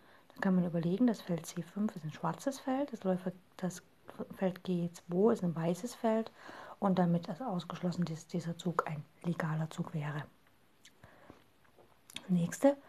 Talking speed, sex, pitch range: 135 wpm, female, 165-195 Hz